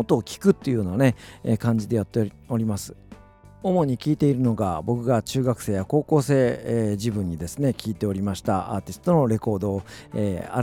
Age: 40-59